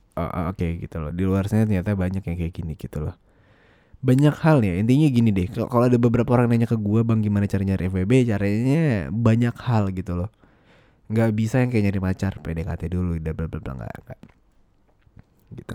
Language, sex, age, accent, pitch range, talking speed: English, male, 20-39, Indonesian, 90-115 Hz, 185 wpm